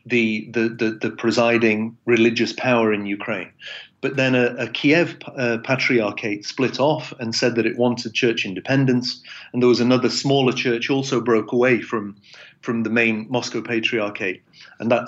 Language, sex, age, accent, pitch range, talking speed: English, male, 40-59, British, 115-130 Hz, 165 wpm